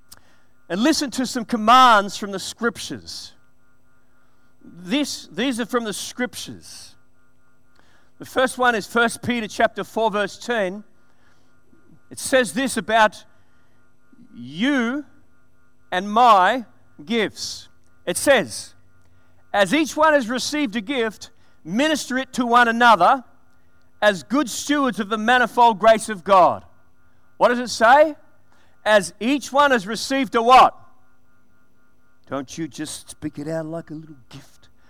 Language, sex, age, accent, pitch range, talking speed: English, male, 40-59, Australian, 160-255 Hz, 130 wpm